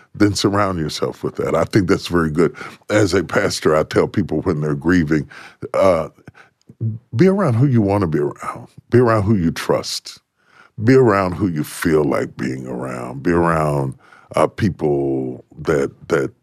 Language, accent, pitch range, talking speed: English, American, 75-115 Hz, 170 wpm